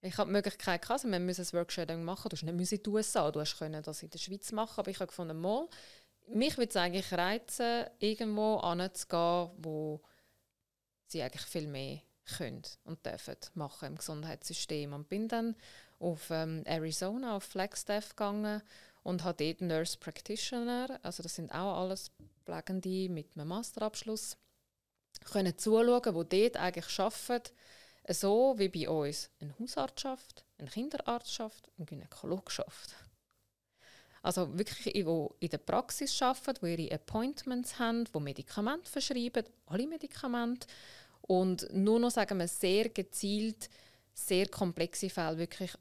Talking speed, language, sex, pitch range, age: 155 wpm, German, female, 165-215 Hz, 20-39